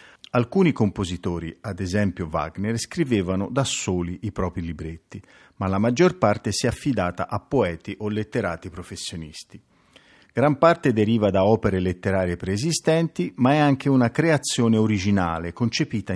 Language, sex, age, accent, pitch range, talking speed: Italian, male, 50-69, native, 90-120 Hz, 135 wpm